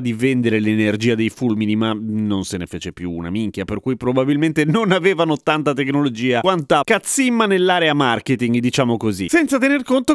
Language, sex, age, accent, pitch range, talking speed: Italian, male, 30-49, native, 130-190 Hz, 170 wpm